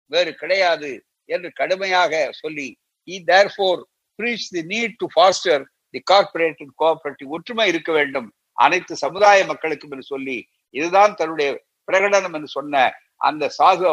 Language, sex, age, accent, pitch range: Tamil, male, 60-79, native, 140-185 Hz